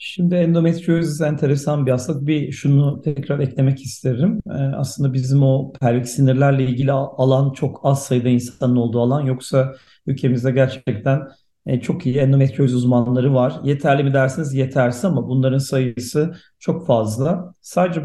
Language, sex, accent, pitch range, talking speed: Turkish, male, native, 130-155 Hz, 145 wpm